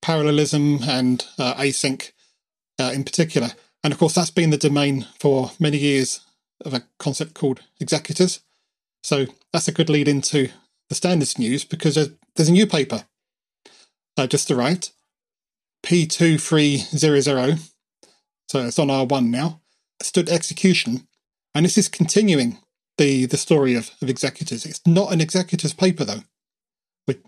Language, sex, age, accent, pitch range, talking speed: English, male, 40-59, British, 140-180 Hz, 145 wpm